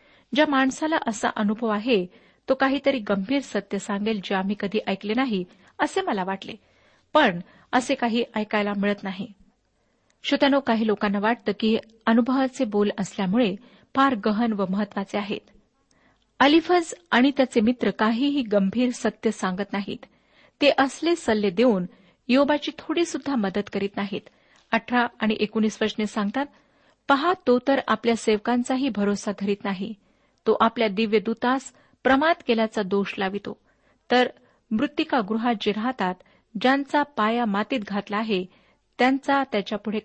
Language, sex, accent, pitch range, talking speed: Marathi, female, native, 205-265 Hz, 125 wpm